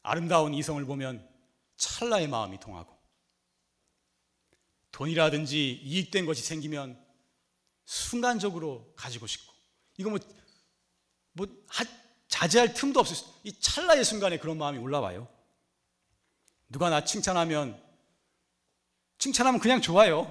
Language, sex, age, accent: Korean, male, 30-49, native